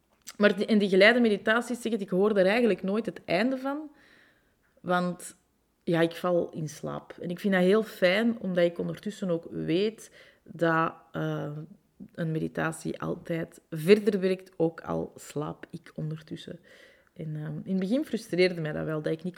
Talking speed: 175 wpm